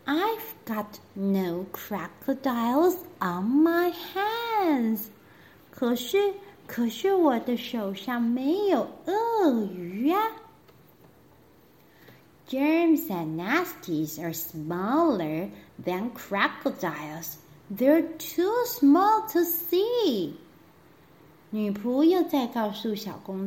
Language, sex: Chinese, female